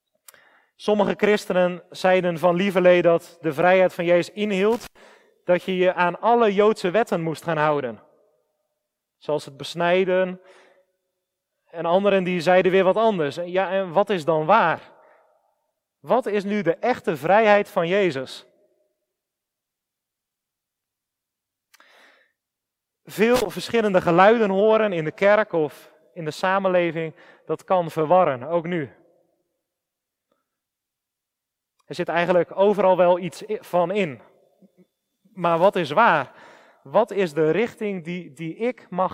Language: Dutch